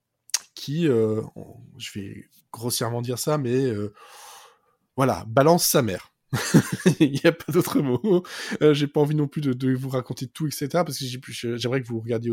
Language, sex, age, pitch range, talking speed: French, male, 20-39, 115-150 Hz, 200 wpm